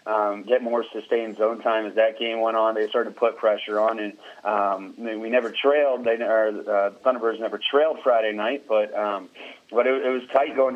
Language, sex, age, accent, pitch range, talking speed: English, male, 30-49, American, 105-115 Hz, 205 wpm